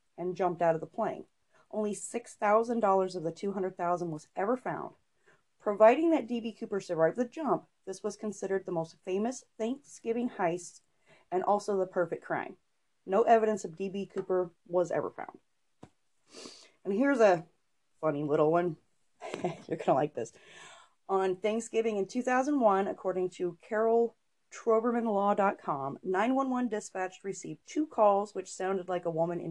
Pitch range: 175-220 Hz